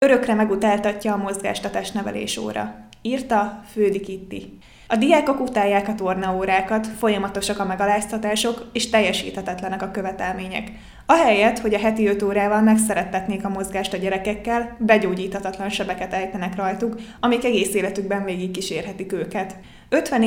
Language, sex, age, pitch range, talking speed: Hungarian, female, 20-39, 195-225 Hz, 120 wpm